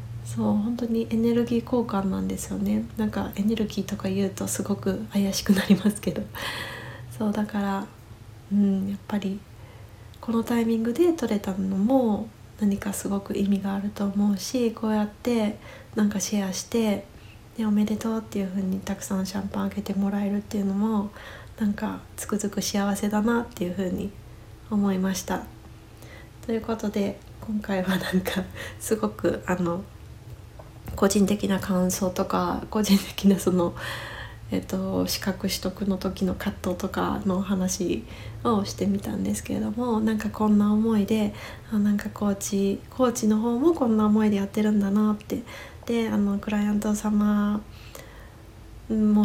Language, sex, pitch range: Japanese, female, 185-215 Hz